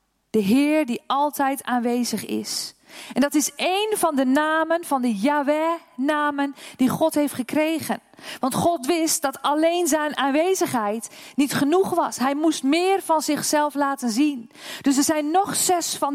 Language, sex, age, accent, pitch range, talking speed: Dutch, female, 40-59, Dutch, 260-325 Hz, 160 wpm